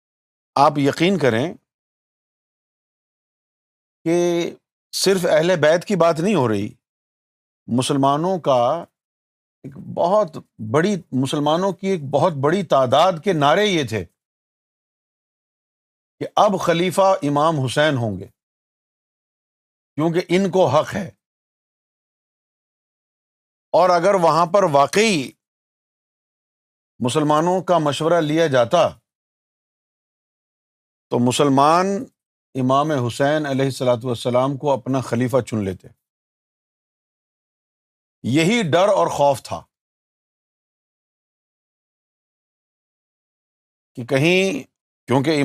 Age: 50-69